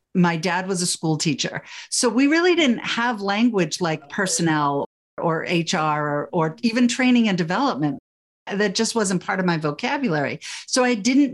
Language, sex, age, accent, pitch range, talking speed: English, female, 50-69, American, 165-230 Hz, 170 wpm